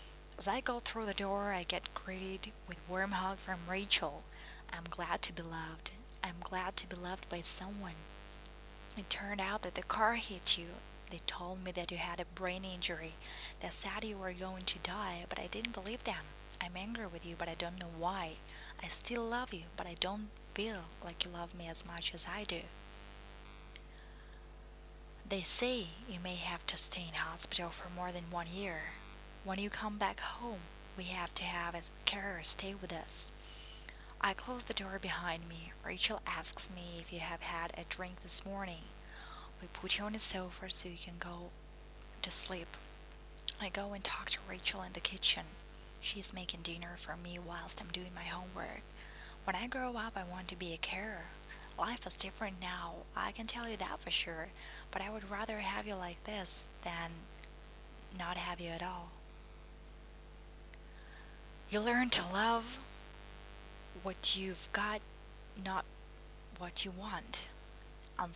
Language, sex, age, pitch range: Russian, female, 20-39, 170-200 Hz